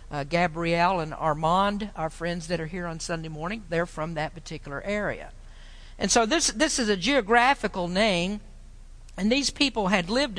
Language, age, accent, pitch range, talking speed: English, 50-69, American, 175-230 Hz, 175 wpm